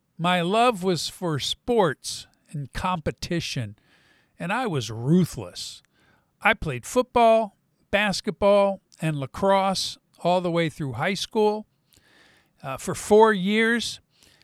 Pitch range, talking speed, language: 155-205 Hz, 110 wpm, English